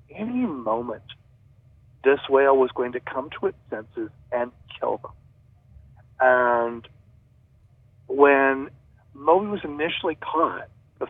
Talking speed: 115 wpm